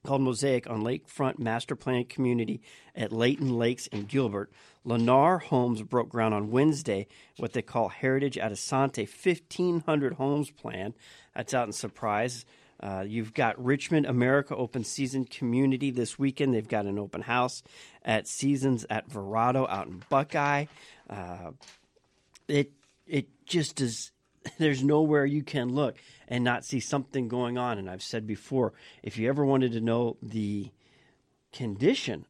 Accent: American